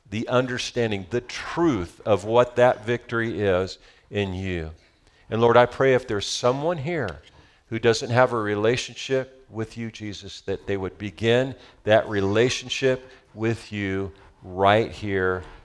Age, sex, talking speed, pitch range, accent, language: 50-69, male, 140 wpm, 95-120 Hz, American, English